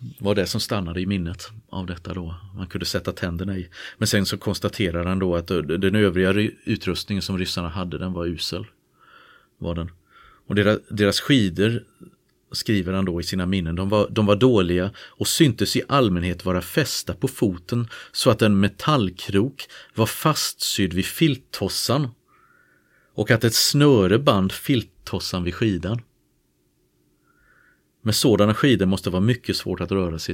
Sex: male